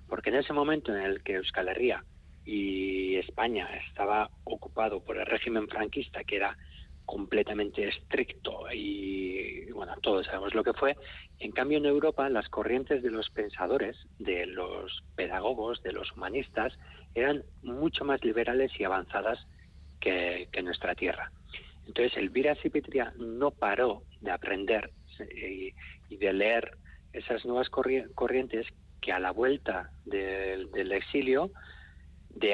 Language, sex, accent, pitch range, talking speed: Spanish, male, Spanish, 80-130 Hz, 140 wpm